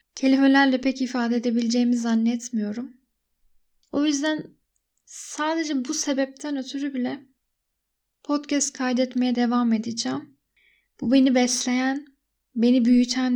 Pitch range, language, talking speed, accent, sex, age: 235-270 Hz, Turkish, 95 wpm, native, female, 10-29